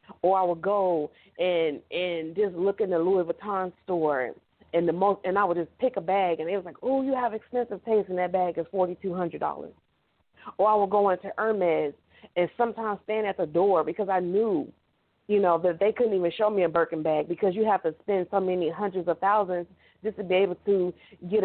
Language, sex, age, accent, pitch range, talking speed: English, female, 40-59, American, 175-215 Hz, 230 wpm